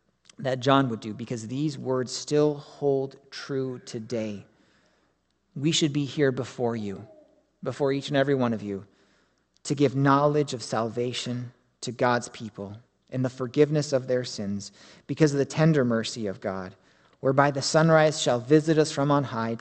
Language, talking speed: English, 165 wpm